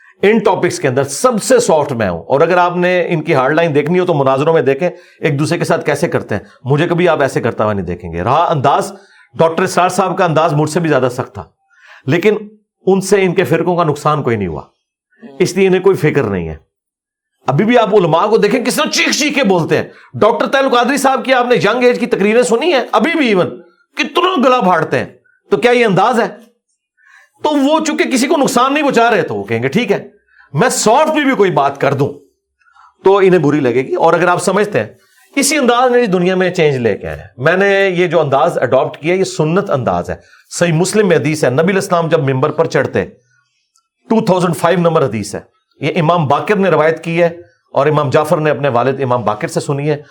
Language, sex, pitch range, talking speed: Urdu, male, 145-215 Hz, 220 wpm